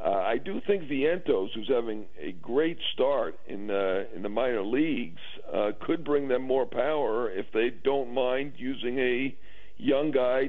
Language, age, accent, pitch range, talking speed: English, 50-69, American, 120-205 Hz, 170 wpm